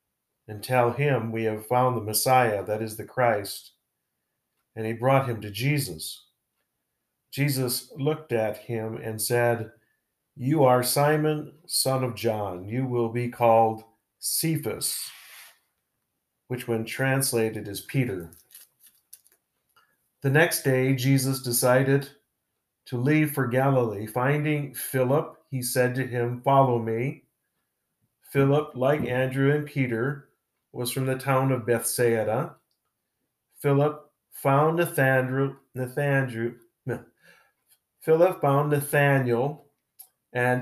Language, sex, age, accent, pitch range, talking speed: English, male, 50-69, American, 120-145 Hz, 110 wpm